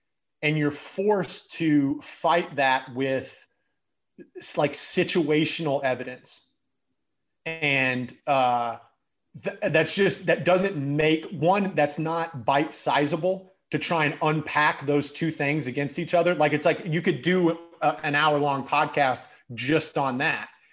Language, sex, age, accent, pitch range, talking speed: English, male, 30-49, American, 140-165 Hz, 130 wpm